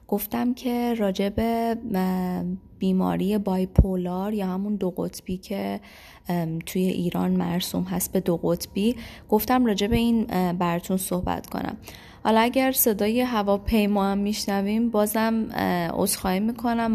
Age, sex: 20-39, female